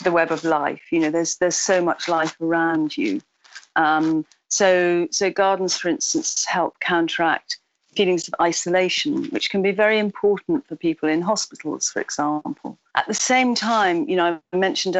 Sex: female